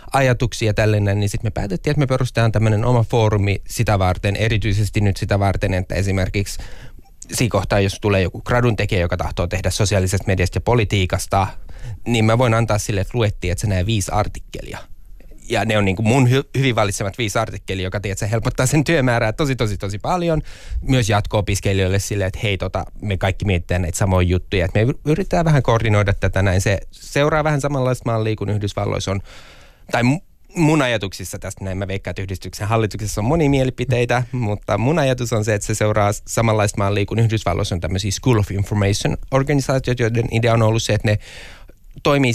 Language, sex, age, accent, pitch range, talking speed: Finnish, male, 20-39, native, 95-115 Hz, 185 wpm